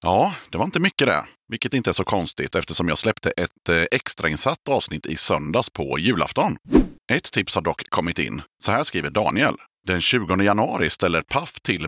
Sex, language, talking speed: male, Swedish, 185 wpm